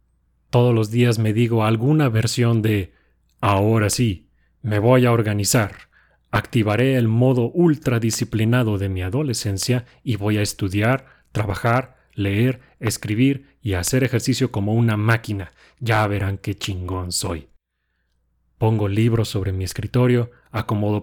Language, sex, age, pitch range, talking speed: Spanish, male, 30-49, 85-115 Hz, 130 wpm